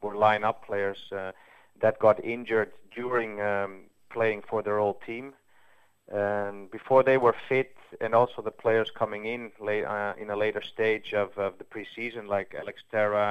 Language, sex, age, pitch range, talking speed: English, male, 30-49, 105-120 Hz, 170 wpm